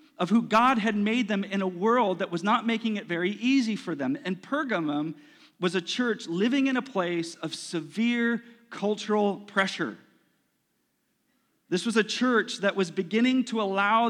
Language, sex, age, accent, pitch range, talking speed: English, male, 40-59, American, 200-255 Hz, 170 wpm